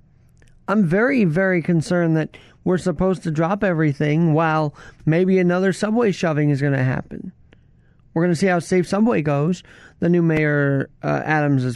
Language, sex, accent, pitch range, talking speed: English, male, American, 150-195 Hz, 165 wpm